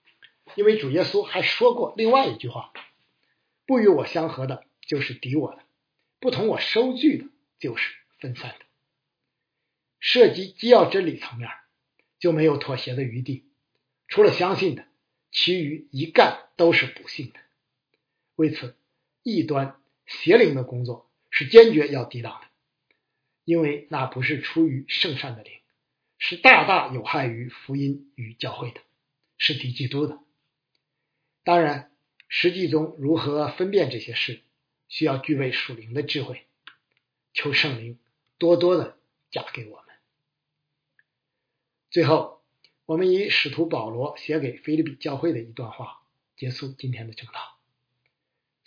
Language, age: Chinese, 60-79